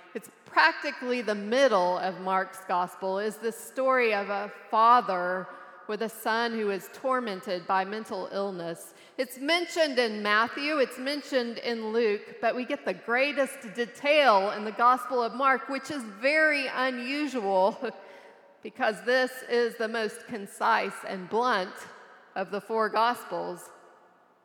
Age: 40-59